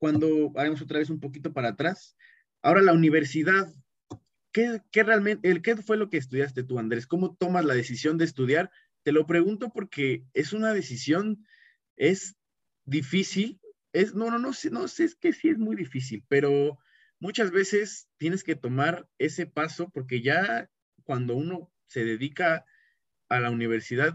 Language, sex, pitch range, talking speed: Spanish, male, 125-170 Hz, 170 wpm